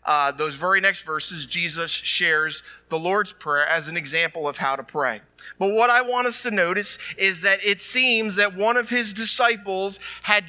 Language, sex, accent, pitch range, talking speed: English, male, American, 125-210 Hz, 195 wpm